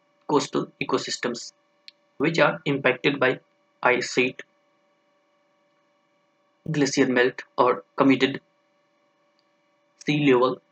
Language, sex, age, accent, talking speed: English, male, 20-39, Indian, 75 wpm